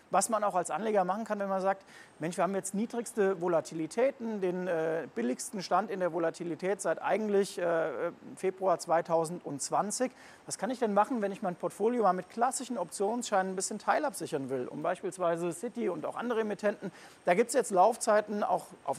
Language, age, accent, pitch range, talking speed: German, 40-59, German, 170-215 Hz, 185 wpm